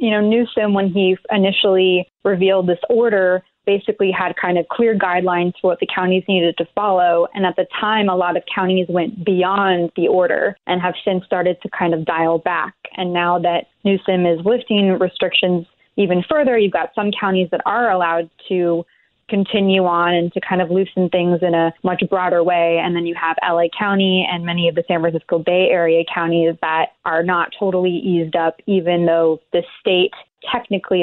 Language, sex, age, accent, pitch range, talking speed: English, female, 20-39, American, 170-195 Hz, 190 wpm